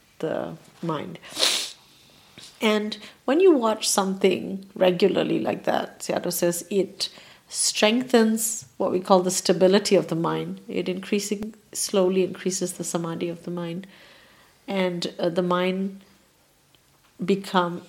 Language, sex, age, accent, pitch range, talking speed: English, female, 50-69, Indian, 175-205 Hz, 120 wpm